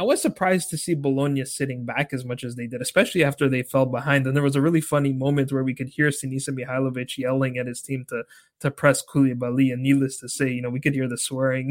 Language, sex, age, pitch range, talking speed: English, male, 20-39, 125-155 Hz, 255 wpm